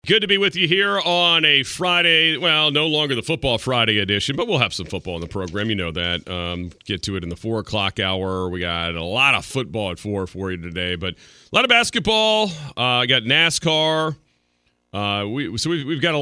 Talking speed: 235 wpm